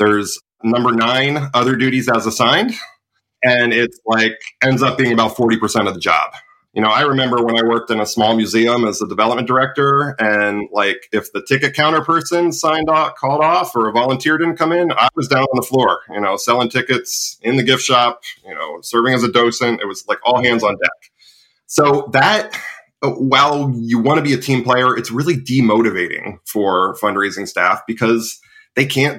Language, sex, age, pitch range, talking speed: English, male, 30-49, 115-140 Hz, 195 wpm